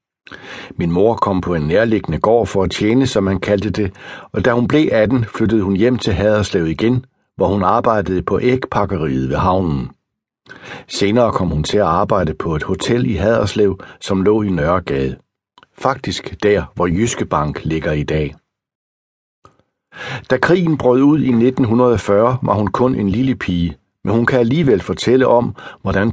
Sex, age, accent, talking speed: male, 60-79, native, 170 wpm